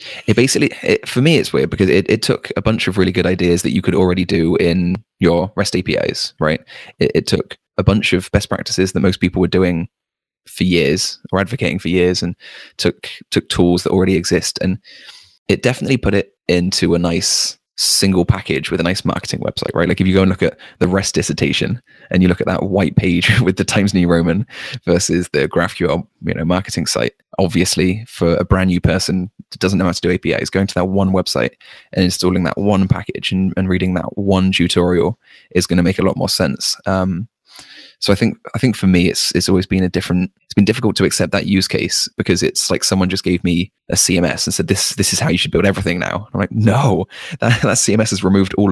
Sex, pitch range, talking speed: male, 90-95 Hz, 230 wpm